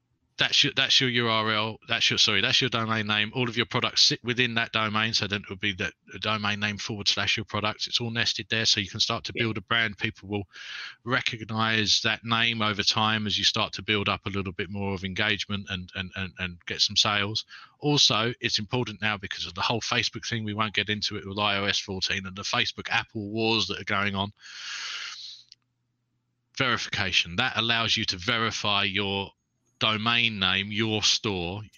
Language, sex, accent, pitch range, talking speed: English, male, British, 100-115 Hz, 205 wpm